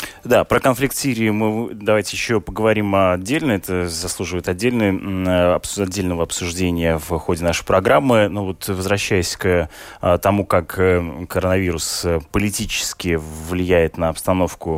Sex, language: male, Russian